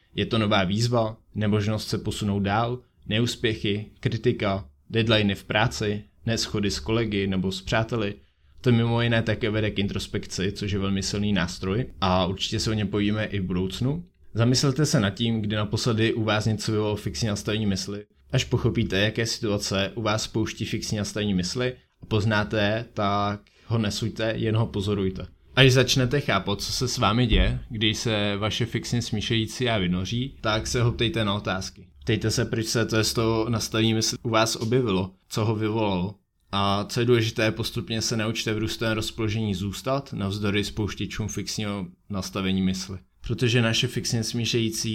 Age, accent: 20-39, native